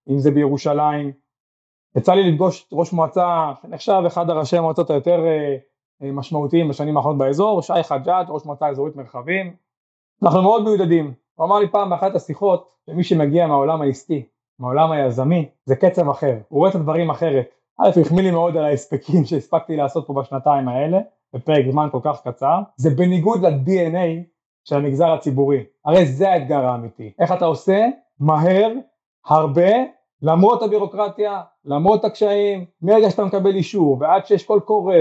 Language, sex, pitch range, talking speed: Hebrew, male, 145-190 Hz, 140 wpm